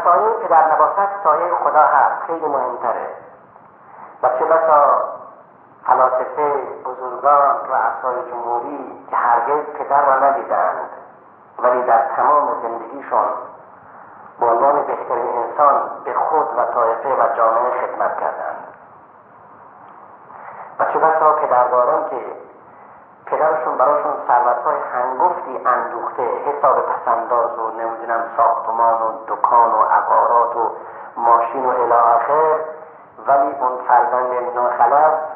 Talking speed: 105 wpm